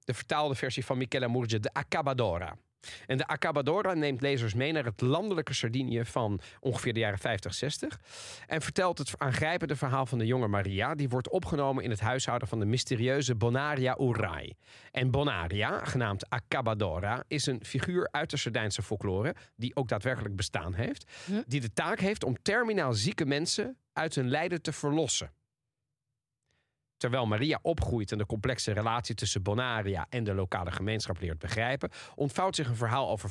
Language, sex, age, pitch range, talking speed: Dutch, male, 40-59, 110-145 Hz, 170 wpm